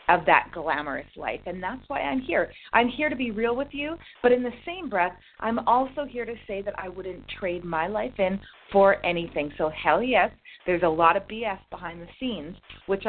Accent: American